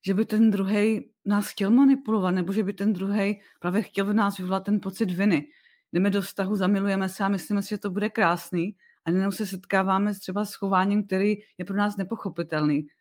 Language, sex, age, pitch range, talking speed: Czech, female, 30-49, 190-215 Hz, 205 wpm